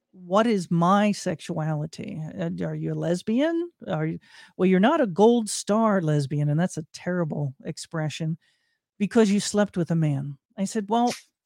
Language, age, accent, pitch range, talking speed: English, 50-69, American, 175-230 Hz, 160 wpm